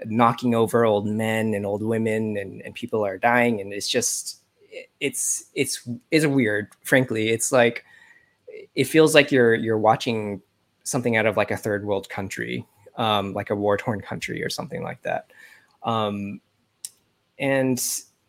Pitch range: 105-125 Hz